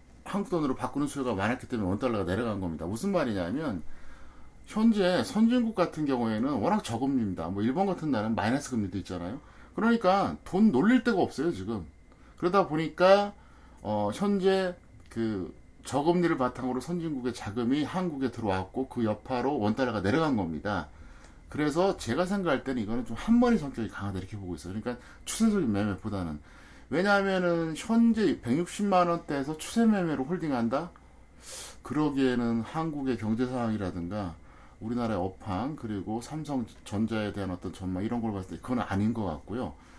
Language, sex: Korean, male